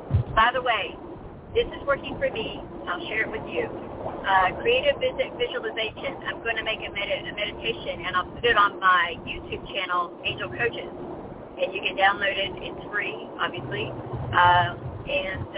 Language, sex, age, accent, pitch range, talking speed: English, female, 50-69, American, 180-280 Hz, 170 wpm